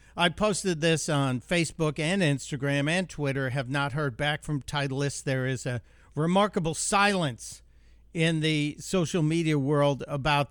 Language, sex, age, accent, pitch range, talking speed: English, male, 60-79, American, 120-155 Hz, 150 wpm